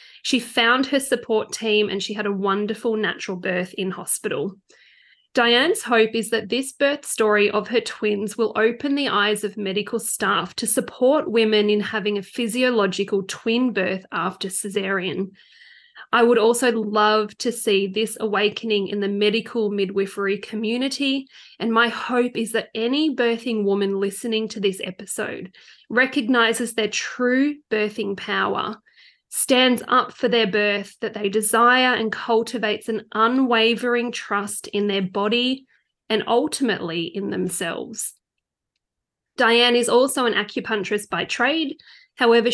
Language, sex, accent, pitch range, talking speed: English, female, Australian, 205-245 Hz, 140 wpm